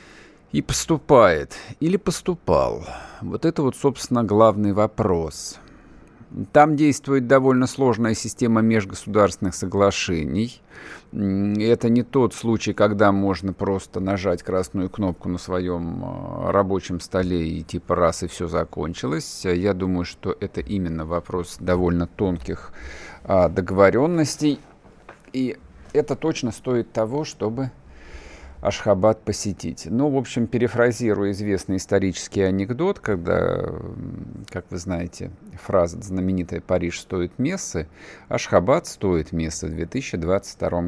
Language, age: Russian, 50-69